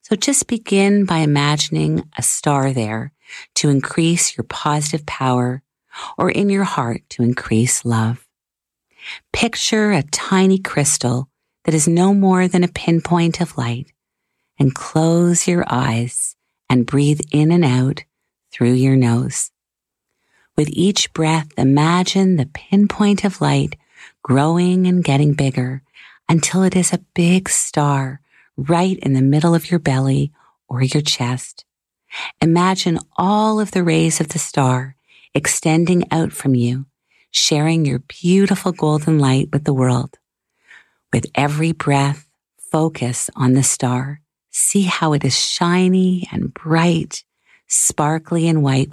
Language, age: English, 40-59